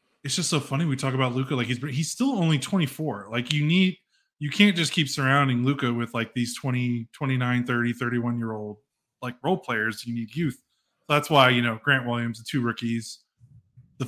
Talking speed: 210 wpm